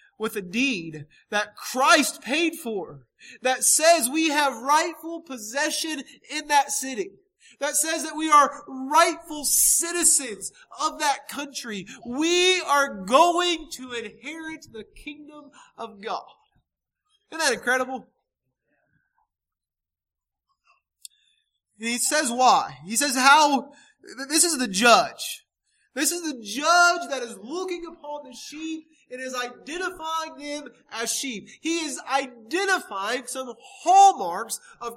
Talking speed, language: 120 wpm, English